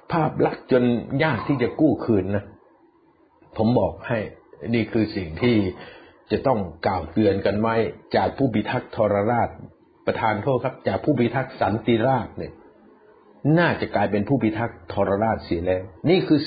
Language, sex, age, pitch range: Thai, male, 60-79, 100-135 Hz